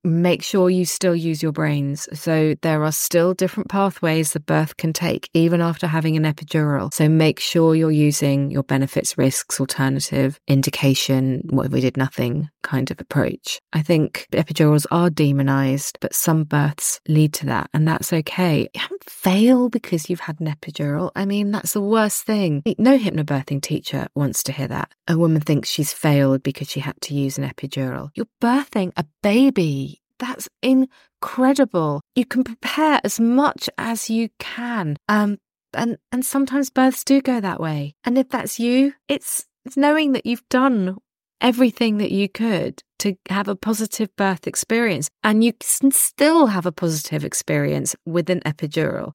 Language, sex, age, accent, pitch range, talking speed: English, female, 30-49, British, 150-230 Hz, 170 wpm